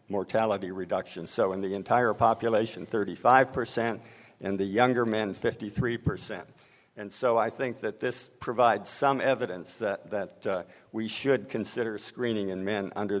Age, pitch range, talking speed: 60-79, 105-125 Hz, 155 wpm